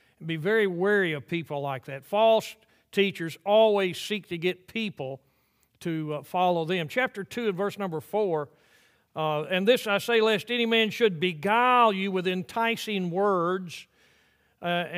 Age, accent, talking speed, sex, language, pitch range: 50-69, American, 160 wpm, male, English, 170-215 Hz